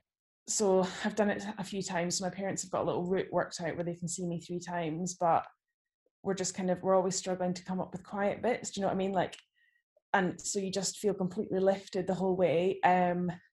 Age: 10-29